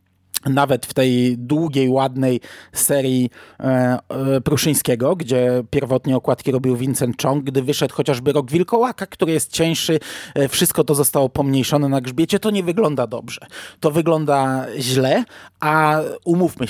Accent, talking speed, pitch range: native, 130 wpm, 130-160 Hz